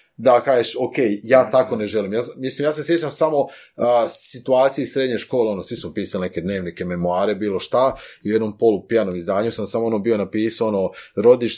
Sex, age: male, 30-49